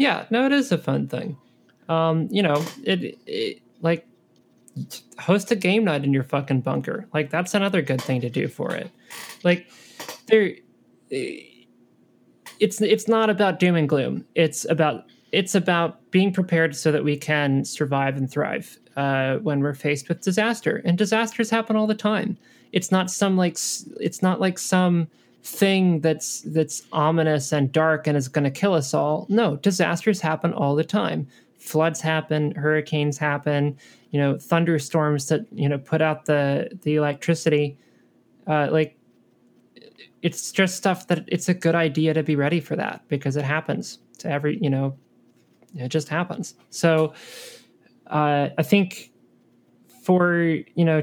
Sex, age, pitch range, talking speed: male, 20-39, 145-185 Hz, 160 wpm